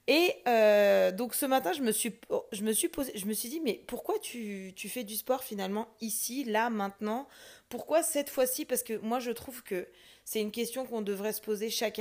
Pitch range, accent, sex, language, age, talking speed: 205-250 Hz, French, female, French, 20-39, 220 wpm